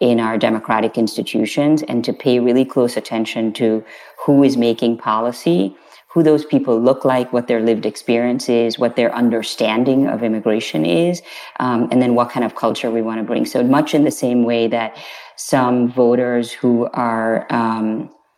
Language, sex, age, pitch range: English, female, 40-59, 115-125 Hz